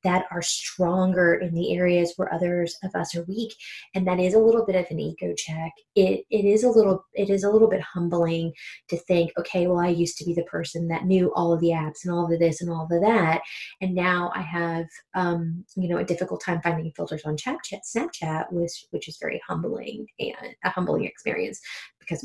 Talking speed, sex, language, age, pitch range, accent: 225 wpm, female, English, 20-39, 170-205 Hz, American